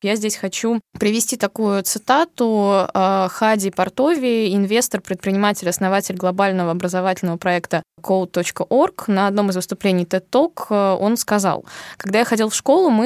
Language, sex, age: Russian, female, 20-39